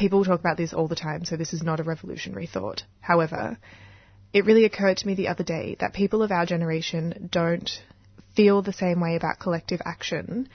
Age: 20-39